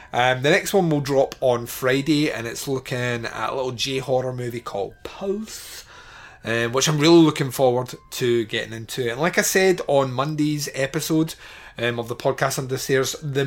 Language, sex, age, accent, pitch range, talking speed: English, male, 30-49, British, 125-160 Hz, 185 wpm